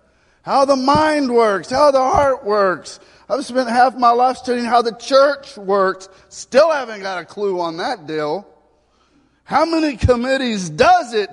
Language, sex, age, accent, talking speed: English, male, 40-59, American, 165 wpm